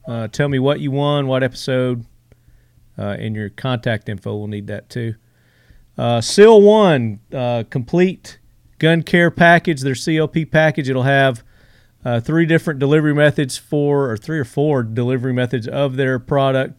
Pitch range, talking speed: 115-145 Hz, 160 wpm